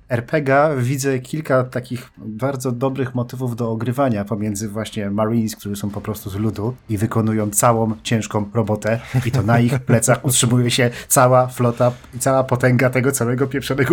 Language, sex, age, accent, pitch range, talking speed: Polish, male, 40-59, native, 105-130 Hz, 165 wpm